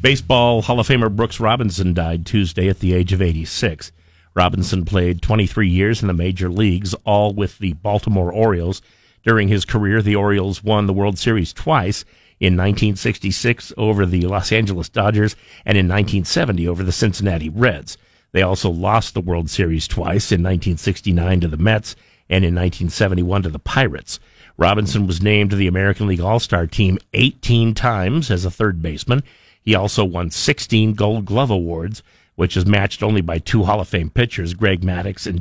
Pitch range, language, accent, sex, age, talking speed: 90-110 Hz, English, American, male, 50-69, 175 wpm